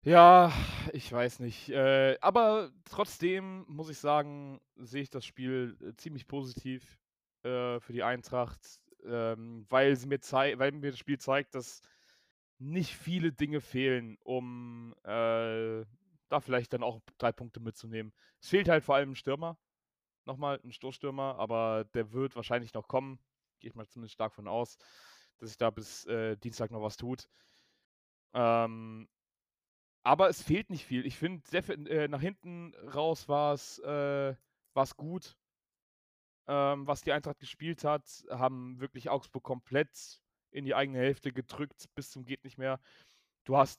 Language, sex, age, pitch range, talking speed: German, male, 20-39, 120-145 Hz, 155 wpm